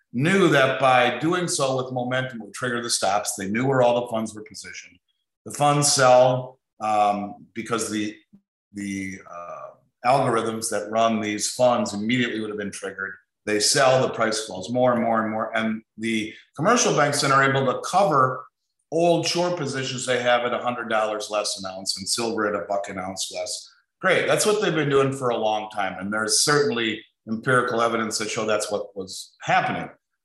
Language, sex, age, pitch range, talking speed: English, male, 50-69, 105-125 Hz, 190 wpm